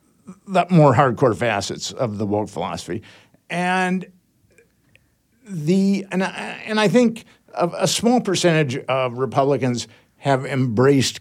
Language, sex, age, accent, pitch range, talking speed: English, male, 50-69, American, 140-195 Hz, 125 wpm